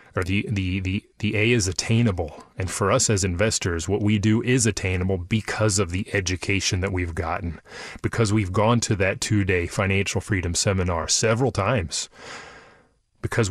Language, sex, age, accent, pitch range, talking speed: English, male, 30-49, American, 95-110 Hz, 170 wpm